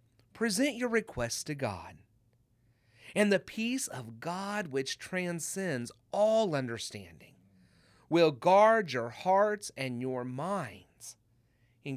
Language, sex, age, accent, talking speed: English, male, 40-59, American, 110 wpm